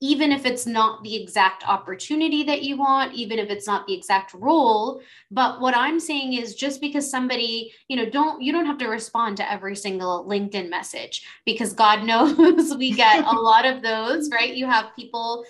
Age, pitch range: 20-39, 210-270 Hz